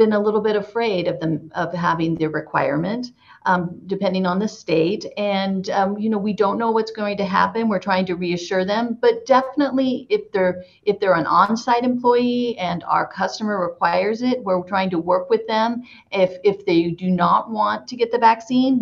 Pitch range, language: 180-220 Hz, English